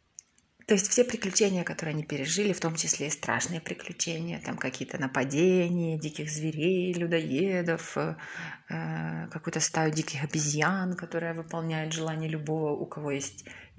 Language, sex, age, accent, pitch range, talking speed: Ukrainian, female, 20-39, native, 160-205 Hz, 135 wpm